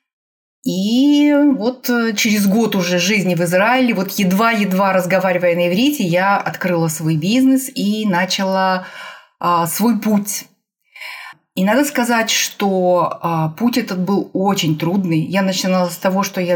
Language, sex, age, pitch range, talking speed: Russian, female, 30-49, 180-220 Hz, 130 wpm